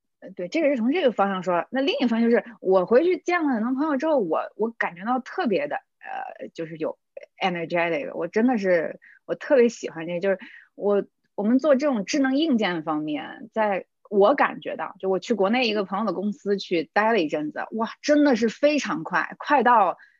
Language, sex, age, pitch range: Chinese, female, 20-39, 190-250 Hz